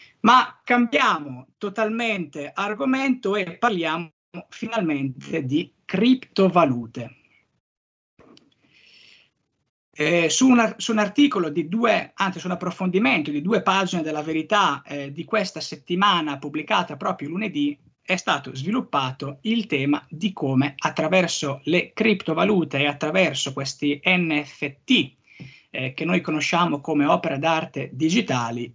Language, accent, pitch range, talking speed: Italian, native, 145-200 Hz, 100 wpm